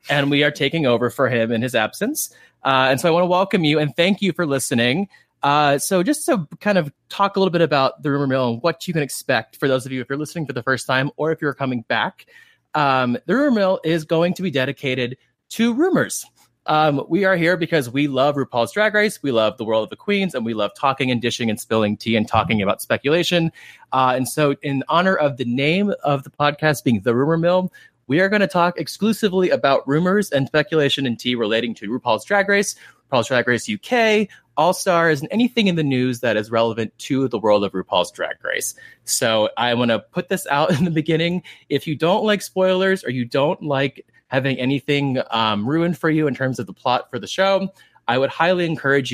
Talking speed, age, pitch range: 230 wpm, 20-39, 125-175 Hz